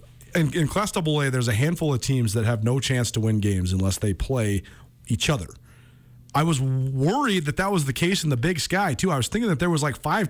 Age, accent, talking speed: 40-59, American, 245 wpm